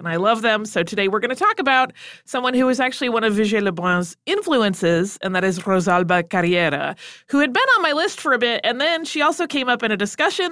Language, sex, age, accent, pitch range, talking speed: English, female, 30-49, American, 175-255 Hz, 250 wpm